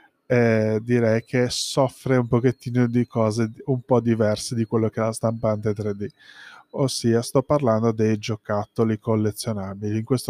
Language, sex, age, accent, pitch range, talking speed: Italian, male, 20-39, native, 115-130 Hz, 150 wpm